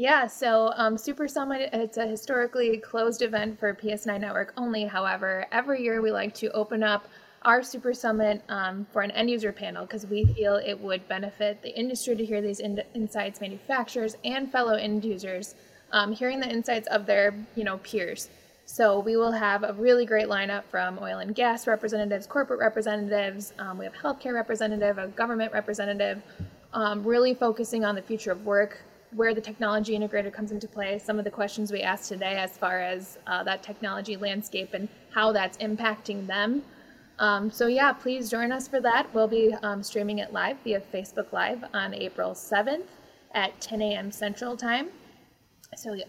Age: 20-39